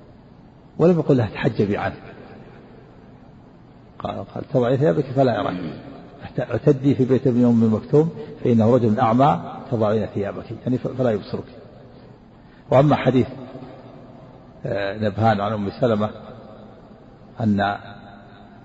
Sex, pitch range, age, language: male, 110-130 Hz, 50-69, Arabic